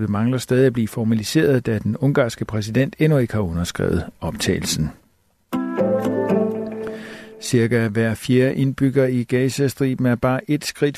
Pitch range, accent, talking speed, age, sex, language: 110-135 Hz, native, 135 wpm, 60-79, male, Danish